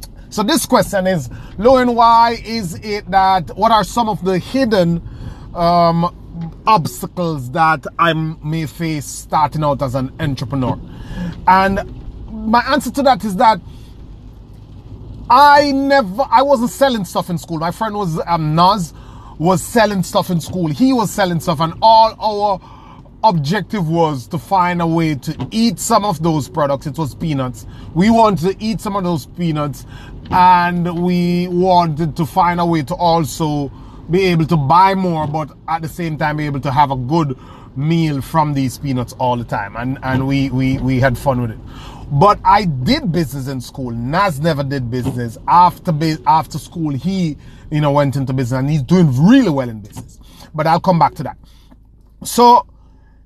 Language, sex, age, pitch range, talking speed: English, male, 30-49, 135-190 Hz, 175 wpm